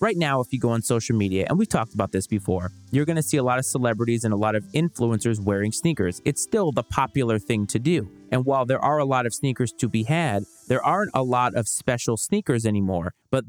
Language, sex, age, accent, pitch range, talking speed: English, male, 30-49, American, 110-145 Hz, 250 wpm